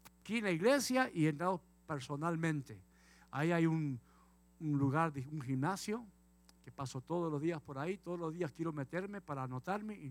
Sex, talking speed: male, 185 wpm